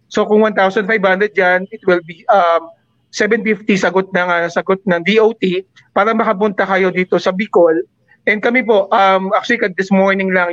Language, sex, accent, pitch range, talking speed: English, male, Filipino, 185-210 Hz, 165 wpm